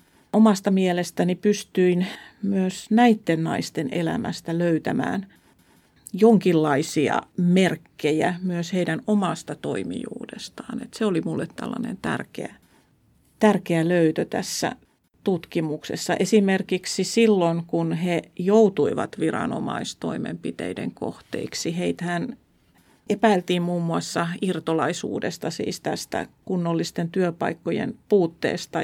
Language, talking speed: Finnish, 85 wpm